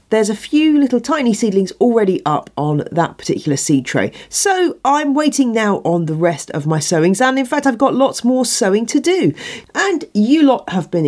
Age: 40-59